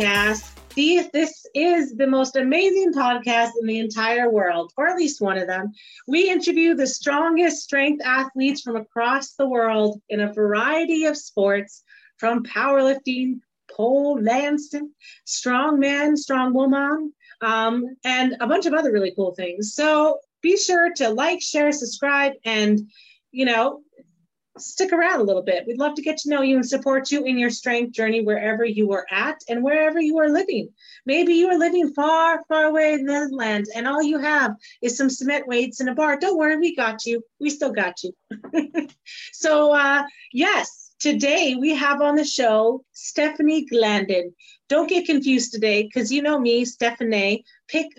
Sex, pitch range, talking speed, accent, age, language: female, 230-300 Hz, 170 wpm, American, 30-49, English